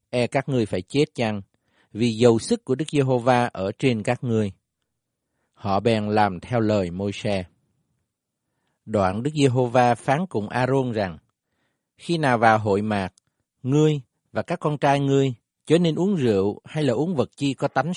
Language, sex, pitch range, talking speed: Vietnamese, male, 105-140 Hz, 170 wpm